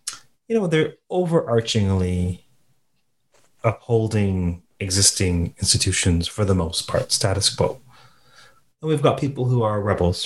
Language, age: English, 30-49